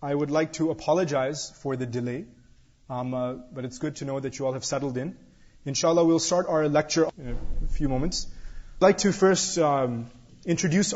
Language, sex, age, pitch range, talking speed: Urdu, male, 30-49, 125-165 Hz, 195 wpm